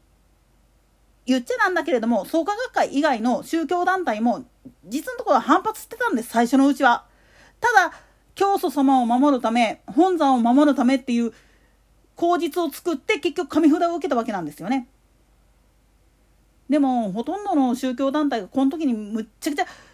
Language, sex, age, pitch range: Japanese, female, 40-59, 250-360 Hz